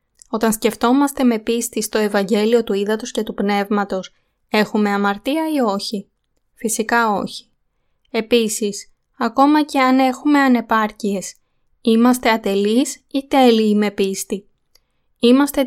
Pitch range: 210-250 Hz